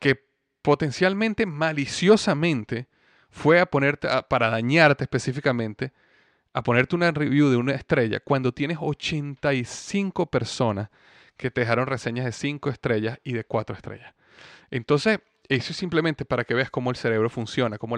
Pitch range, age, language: 115-145 Hz, 30-49, Spanish